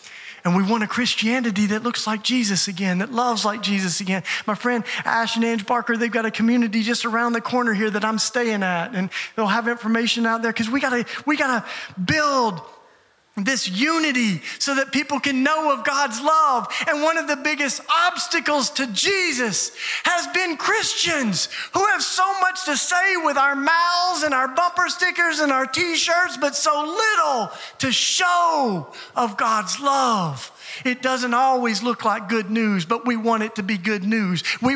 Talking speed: 180 wpm